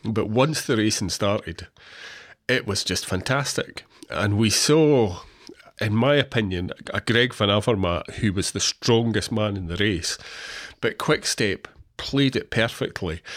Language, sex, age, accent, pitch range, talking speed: English, male, 30-49, British, 100-125 Hz, 145 wpm